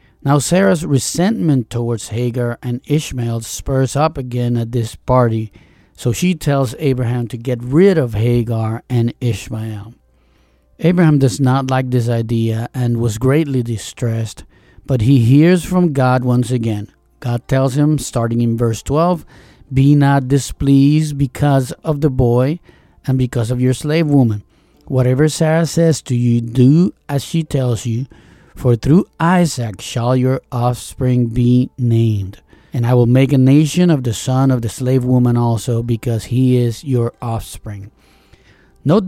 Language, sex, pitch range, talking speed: English, male, 120-140 Hz, 150 wpm